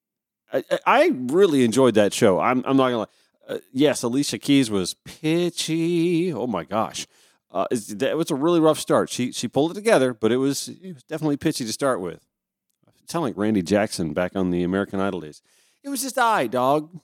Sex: male